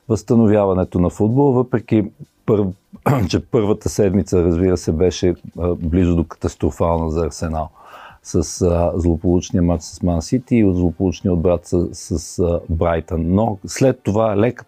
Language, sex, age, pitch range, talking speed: Bulgarian, male, 50-69, 85-110 Hz, 130 wpm